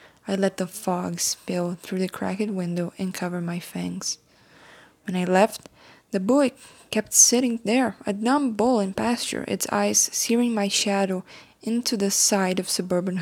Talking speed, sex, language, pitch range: 165 wpm, female, English, 180-215 Hz